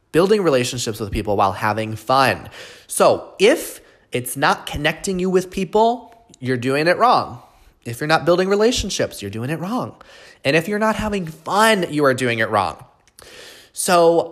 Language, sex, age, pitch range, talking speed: English, male, 20-39, 125-205 Hz, 170 wpm